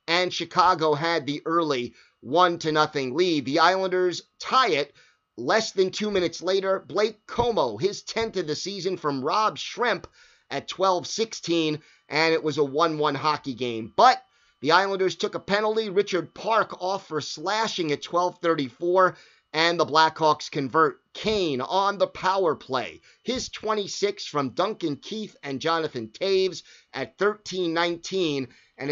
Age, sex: 30-49, male